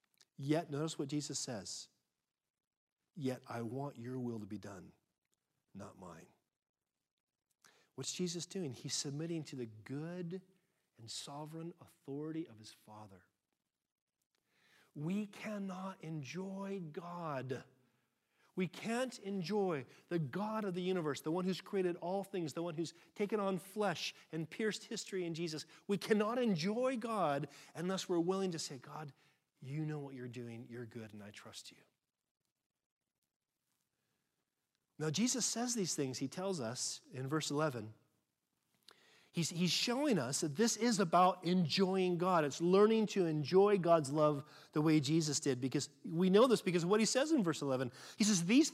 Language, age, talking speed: English, 40-59, 155 wpm